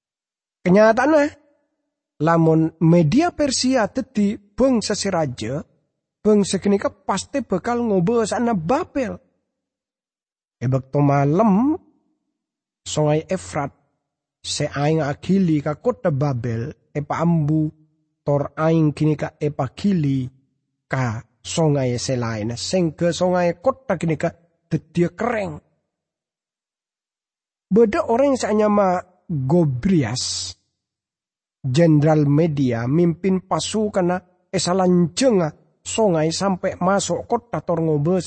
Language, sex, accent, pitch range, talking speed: English, male, Indonesian, 145-205 Hz, 90 wpm